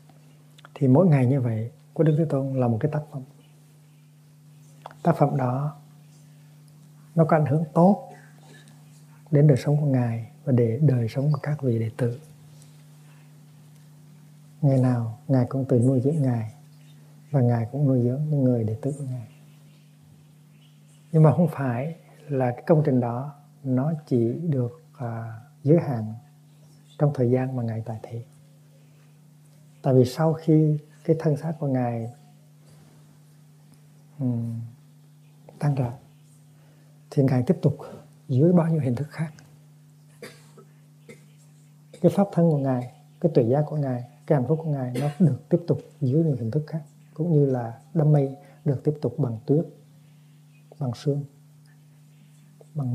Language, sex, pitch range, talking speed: Vietnamese, male, 135-150 Hz, 155 wpm